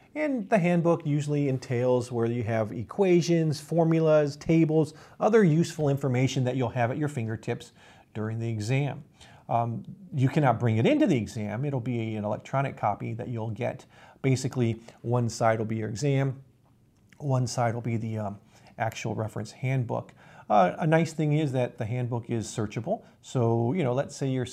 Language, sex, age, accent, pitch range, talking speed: English, male, 40-59, American, 115-155 Hz, 175 wpm